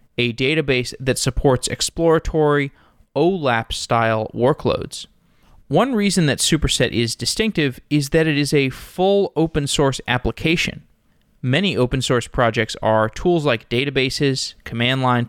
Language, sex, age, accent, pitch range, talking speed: English, male, 20-39, American, 115-145 Hz, 115 wpm